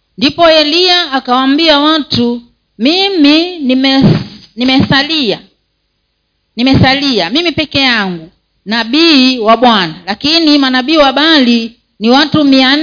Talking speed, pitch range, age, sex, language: 100 wpm, 235-305 Hz, 40-59, female, Swahili